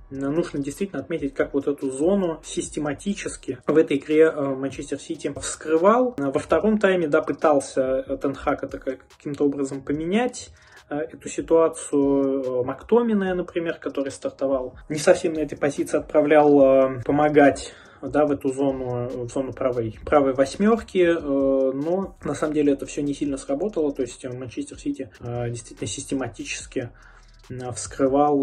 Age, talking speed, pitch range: 20-39, 125 wpm, 135-160 Hz